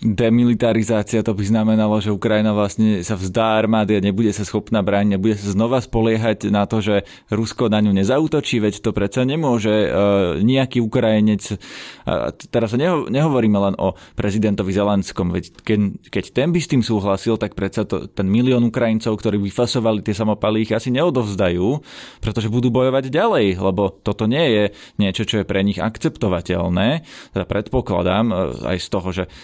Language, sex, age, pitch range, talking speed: Slovak, male, 20-39, 100-115 Hz, 170 wpm